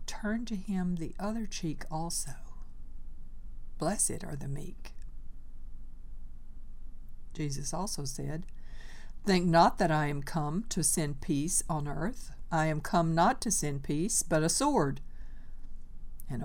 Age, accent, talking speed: 60-79, American, 130 wpm